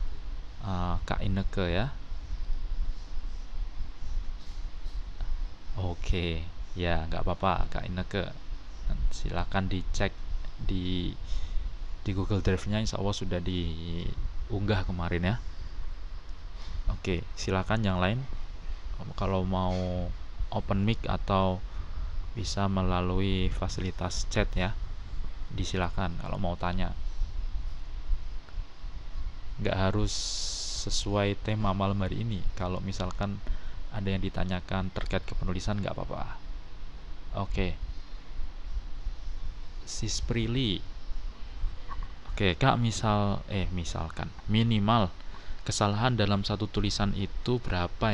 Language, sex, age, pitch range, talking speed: Indonesian, male, 20-39, 80-100 Hz, 90 wpm